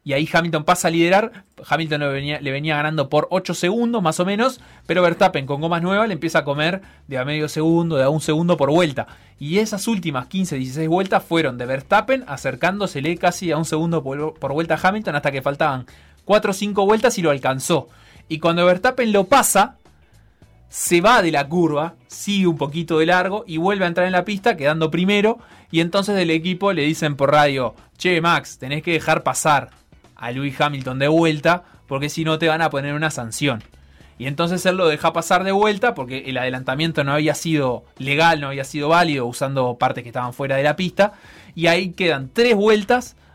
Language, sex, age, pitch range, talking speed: Spanish, male, 20-39, 140-185 Hz, 205 wpm